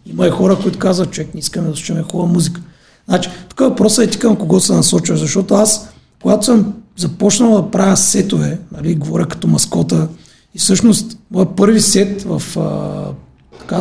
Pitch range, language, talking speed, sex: 175-220 Hz, Bulgarian, 180 wpm, male